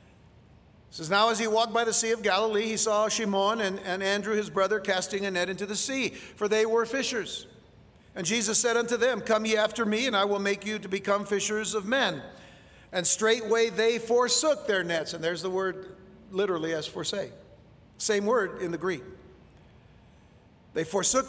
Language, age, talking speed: English, 50-69, 190 wpm